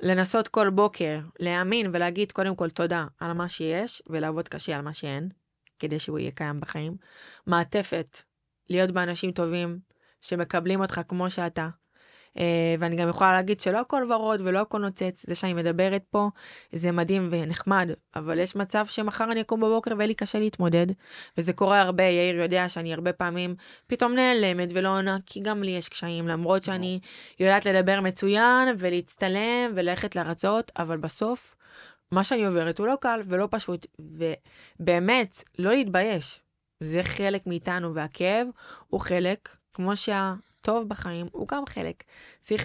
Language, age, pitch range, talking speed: Hebrew, 20-39, 170-210 Hz, 155 wpm